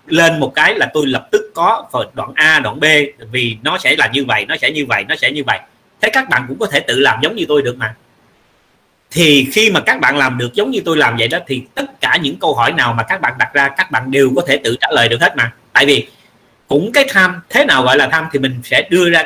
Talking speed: 280 wpm